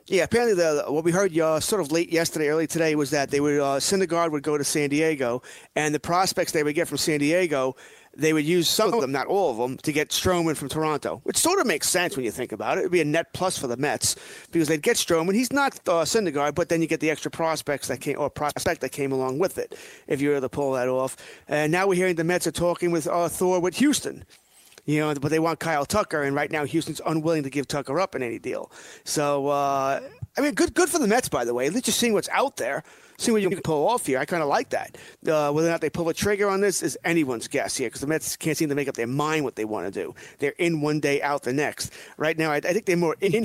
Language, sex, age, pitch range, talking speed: English, male, 30-49, 145-180 Hz, 280 wpm